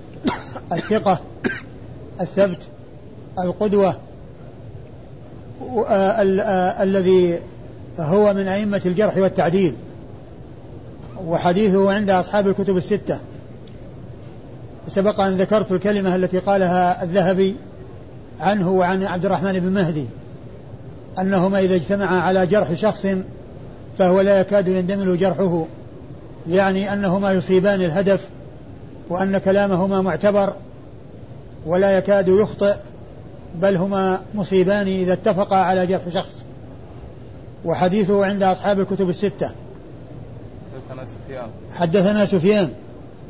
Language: Arabic